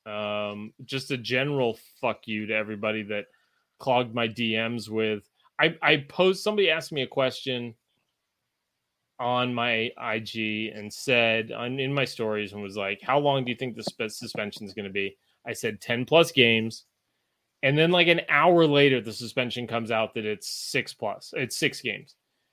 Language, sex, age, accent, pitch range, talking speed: English, male, 20-39, American, 110-135 Hz, 175 wpm